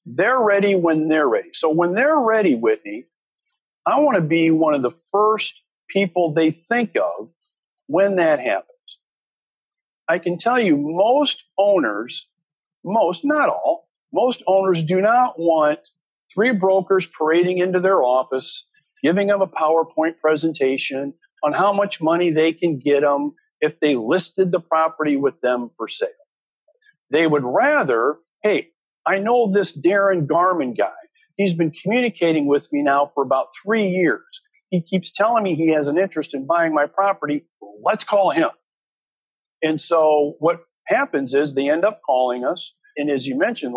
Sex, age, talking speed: male, 50-69, 160 wpm